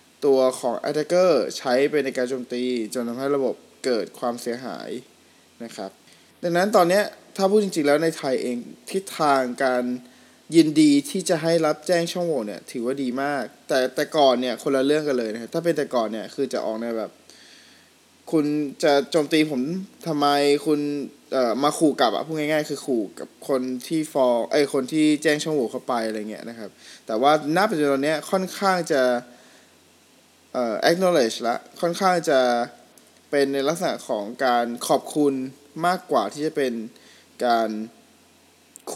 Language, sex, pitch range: Thai, male, 125-160 Hz